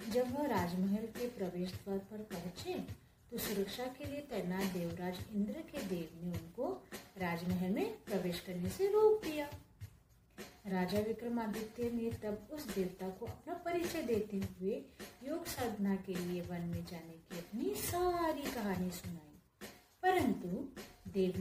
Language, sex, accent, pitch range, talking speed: Hindi, female, native, 180-235 Hz, 145 wpm